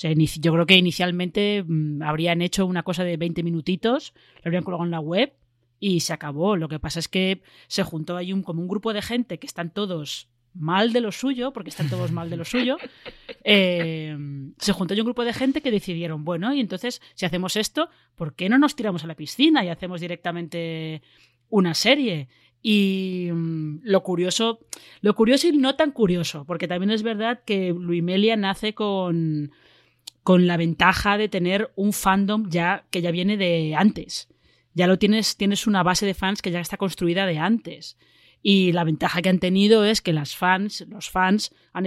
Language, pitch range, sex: Spanish, 170-205 Hz, female